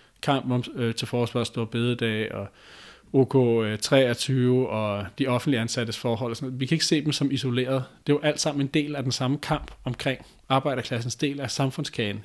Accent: native